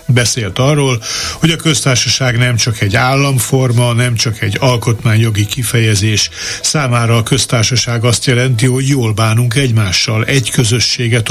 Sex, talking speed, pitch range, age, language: male, 135 wpm, 110-135 Hz, 60-79, Hungarian